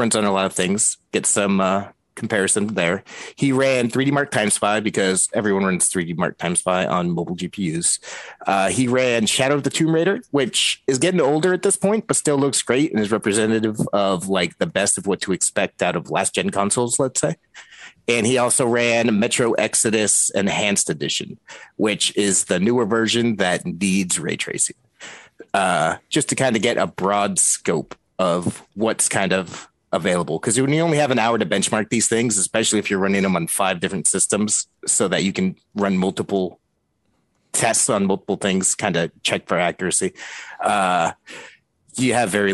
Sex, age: male, 30-49